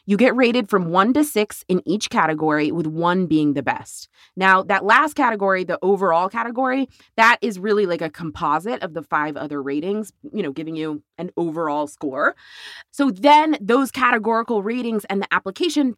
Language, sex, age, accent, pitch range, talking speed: English, female, 30-49, American, 160-230 Hz, 180 wpm